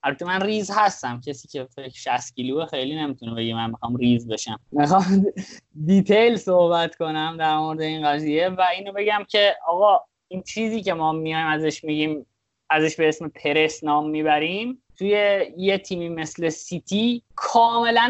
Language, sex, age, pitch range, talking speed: Persian, male, 20-39, 155-215 Hz, 160 wpm